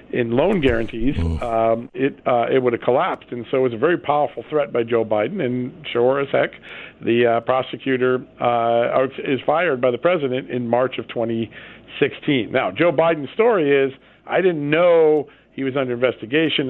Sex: male